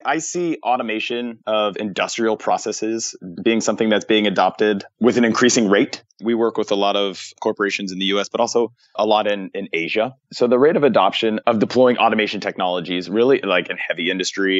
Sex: male